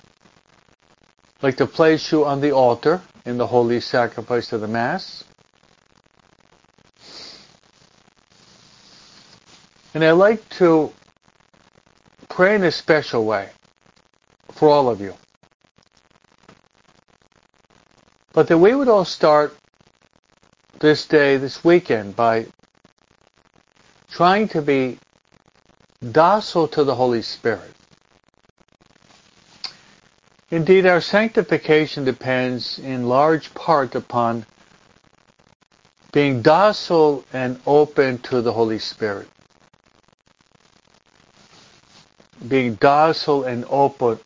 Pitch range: 120-160 Hz